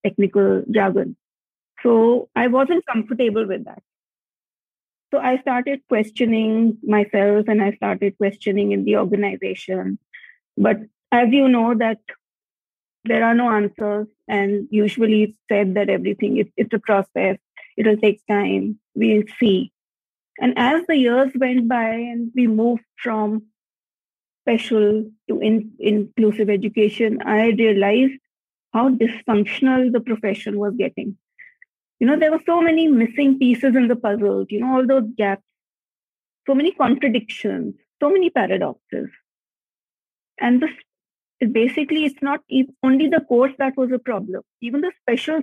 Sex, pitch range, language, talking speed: female, 210-260 Hz, English, 135 wpm